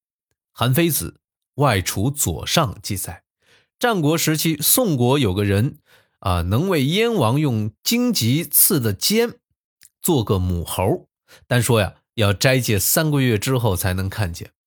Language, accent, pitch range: Chinese, native, 100-140 Hz